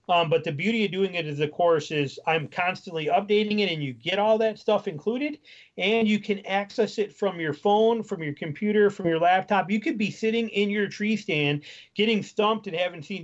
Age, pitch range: 30-49, 160-205 Hz